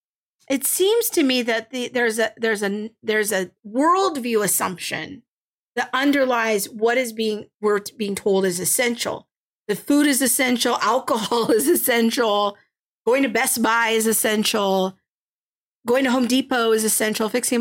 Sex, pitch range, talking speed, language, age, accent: female, 210-270 Hz, 150 wpm, English, 40-59, American